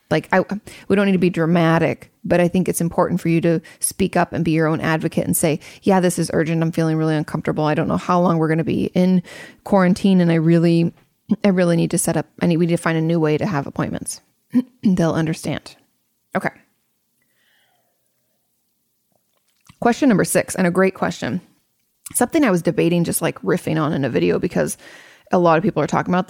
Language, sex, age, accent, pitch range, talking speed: English, female, 20-39, American, 165-200 Hz, 210 wpm